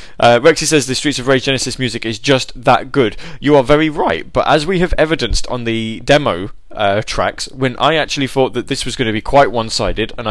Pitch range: 105-150 Hz